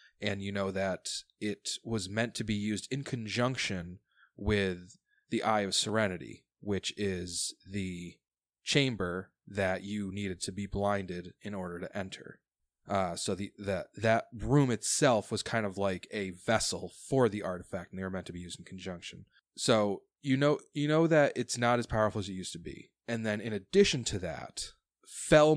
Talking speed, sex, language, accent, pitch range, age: 185 wpm, male, English, American, 95-115 Hz, 20-39